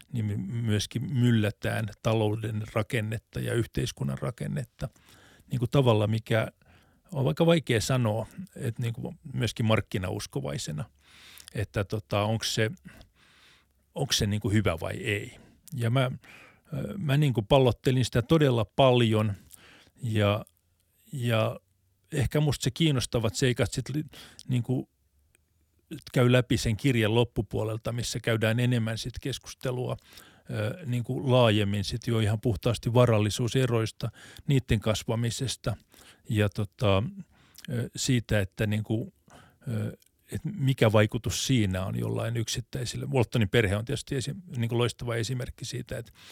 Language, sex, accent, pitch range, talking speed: Finnish, male, native, 105-125 Hz, 120 wpm